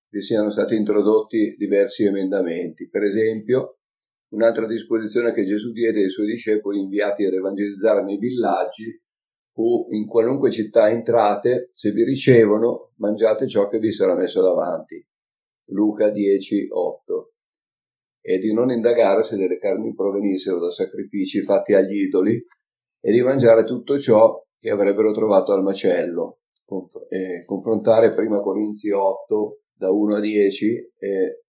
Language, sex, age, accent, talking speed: Italian, male, 50-69, native, 135 wpm